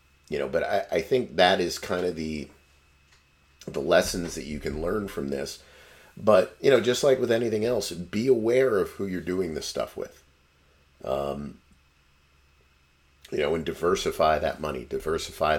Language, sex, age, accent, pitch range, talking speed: English, male, 40-59, American, 70-80 Hz, 170 wpm